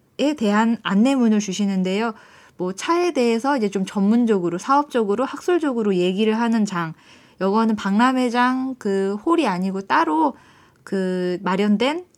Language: Korean